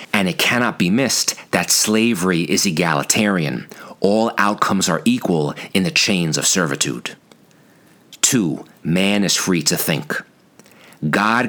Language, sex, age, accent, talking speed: English, male, 40-59, American, 130 wpm